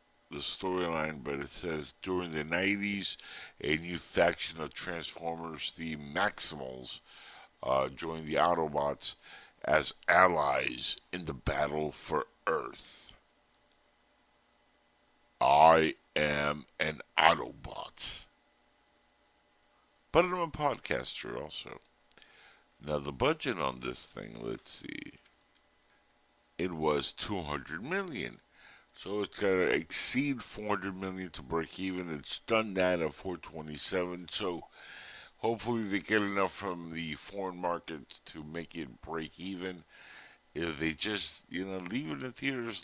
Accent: American